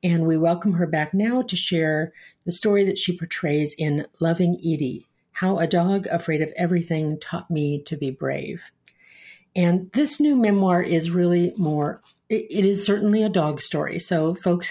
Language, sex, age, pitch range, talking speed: English, female, 50-69, 155-185 Hz, 170 wpm